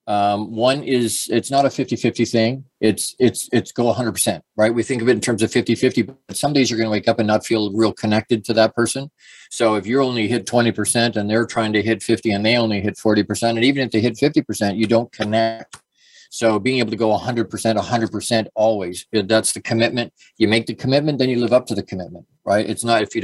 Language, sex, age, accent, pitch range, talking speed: English, male, 40-59, American, 105-120 Hz, 240 wpm